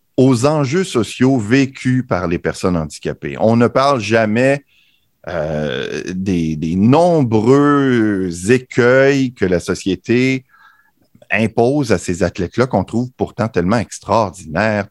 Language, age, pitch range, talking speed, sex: French, 50-69, 95-130 Hz, 115 wpm, male